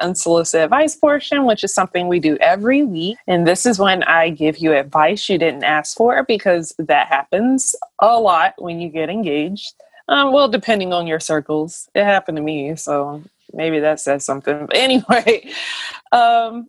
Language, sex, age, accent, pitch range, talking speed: English, female, 20-39, American, 165-230 Hz, 175 wpm